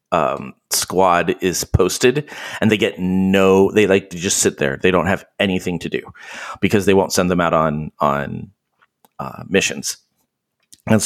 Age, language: 30-49, English